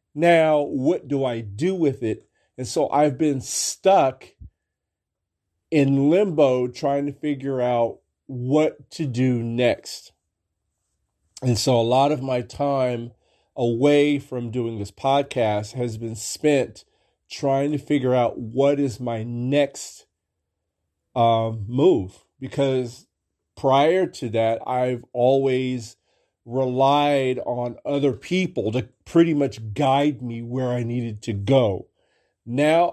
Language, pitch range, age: English, 115-140 Hz, 40-59